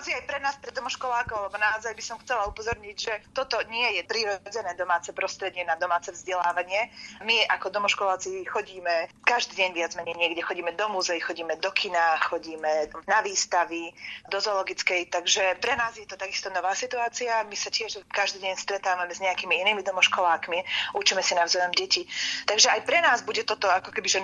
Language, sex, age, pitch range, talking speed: Slovak, female, 30-49, 185-220 Hz, 175 wpm